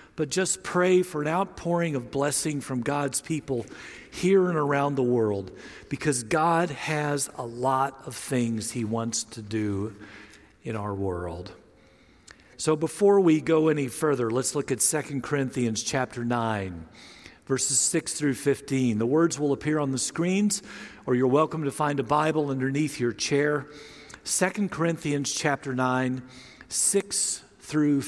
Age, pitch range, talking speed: 50-69, 115-155 Hz, 150 wpm